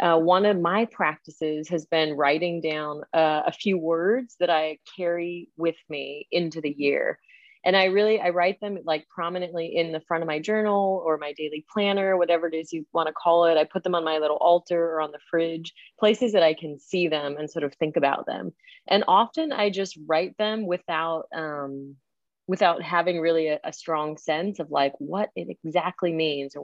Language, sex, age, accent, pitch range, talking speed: English, female, 30-49, American, 155-185 Hz, 205 wpm